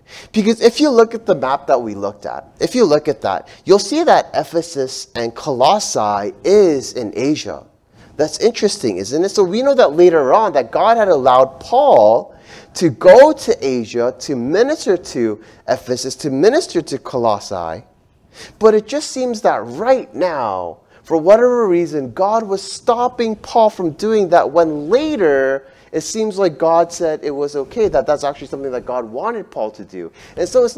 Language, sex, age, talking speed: English, male, 30-49, 180 wpm